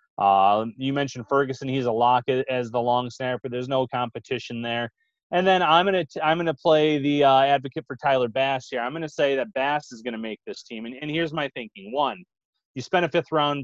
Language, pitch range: English, 125-160 Hz